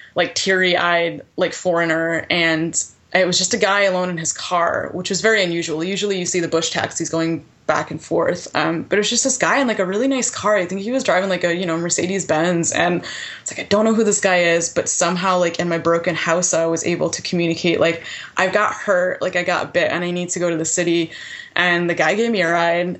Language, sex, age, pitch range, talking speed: English, female, 20-39, 165-185 Hz, 255 wpm